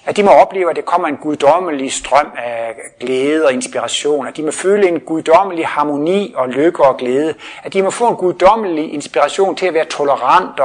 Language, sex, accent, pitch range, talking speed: Danish, male, native, 130-180 Hz, 205 wpm